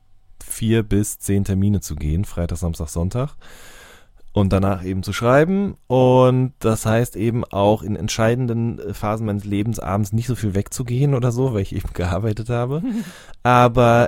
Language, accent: German, German